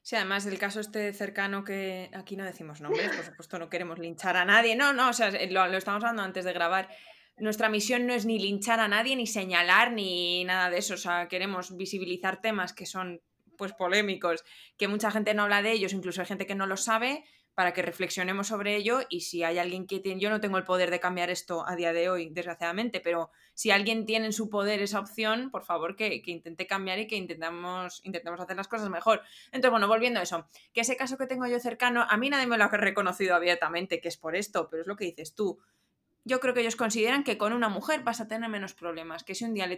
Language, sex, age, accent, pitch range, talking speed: Spanish, female, 20-39, Spanish, 180-235 Hz, 245 wpm